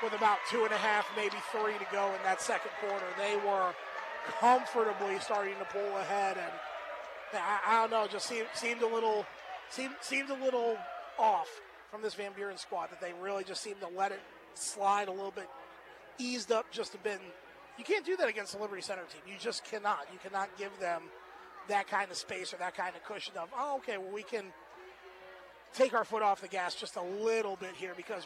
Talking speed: 205 wpm